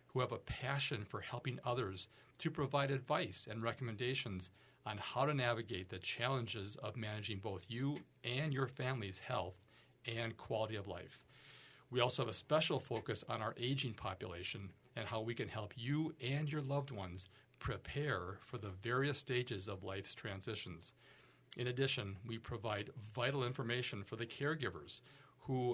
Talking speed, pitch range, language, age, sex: 160 wpm, 110-135 Hz, English, 40-59, male